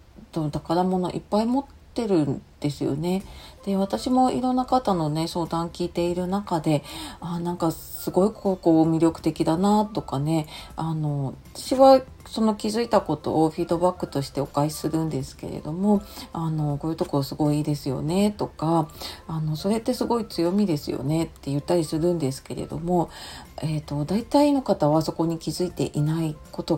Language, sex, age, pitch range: Japanese, female, 40-59, 150-200 Hz